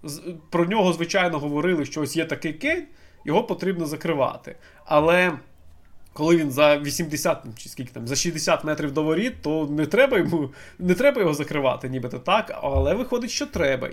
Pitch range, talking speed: 130-170 Hz, 170 wpm